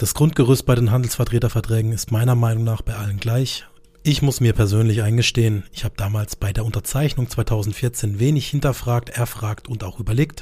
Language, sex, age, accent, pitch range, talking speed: German, male, 30-49, German, 110-130 Hz, 175 wpm